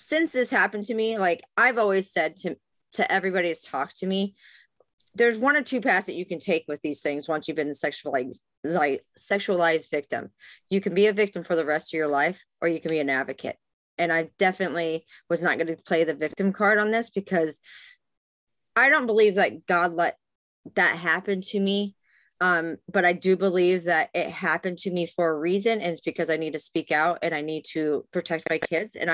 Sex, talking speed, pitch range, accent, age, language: female, 220 wpm, 165-210 Hz, American, 30-49, English